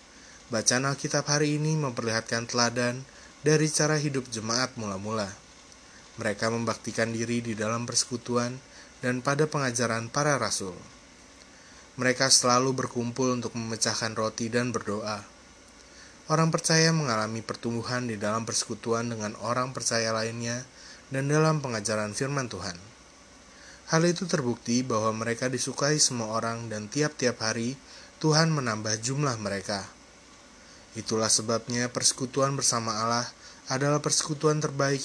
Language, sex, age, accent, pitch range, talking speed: Indonesian, male, 20-39, native, 110-135 Hz, 120 wpm